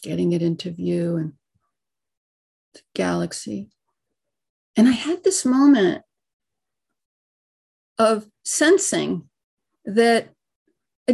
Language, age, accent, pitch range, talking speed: English, 40-59, American, 175-240 Hz, 85 wpm